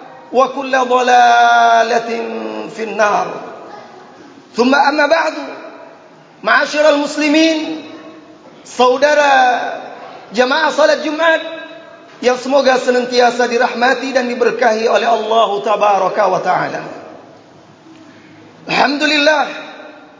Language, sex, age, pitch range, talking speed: Malay, male, 30-49, 245-295 Hz, 75 wpm